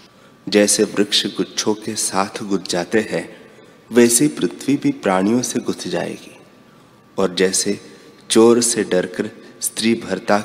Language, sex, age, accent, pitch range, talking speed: Hindi, male, 30-49, native, 95-115 Hz, 125 wpm